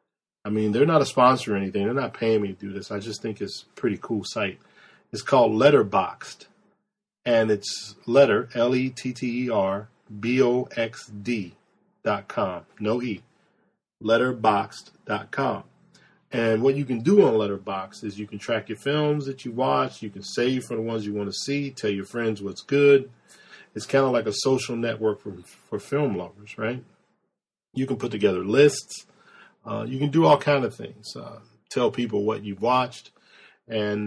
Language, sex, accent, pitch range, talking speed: English, male, American, 105-135 Hz, 170 wpm